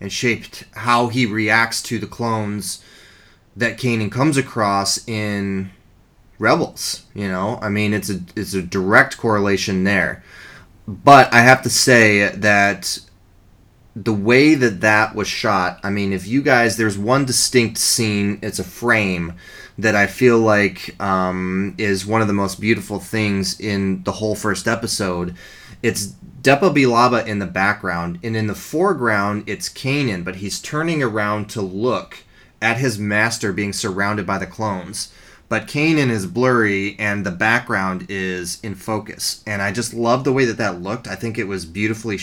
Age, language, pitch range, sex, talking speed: 20-39, English, 95-115 Hz, male, 165 wpm